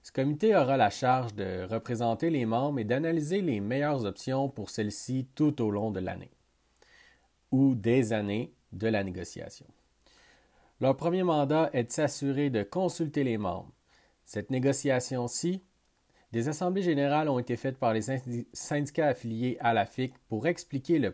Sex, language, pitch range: male, French, 115-150 Hz